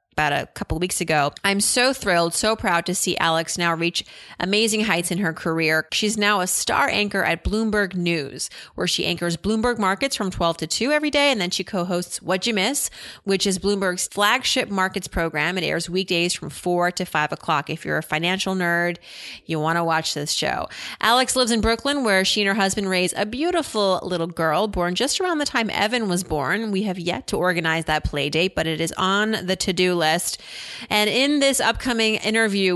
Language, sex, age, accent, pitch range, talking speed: English, female, 30-49, American, 175-220 Hz, 210 wpm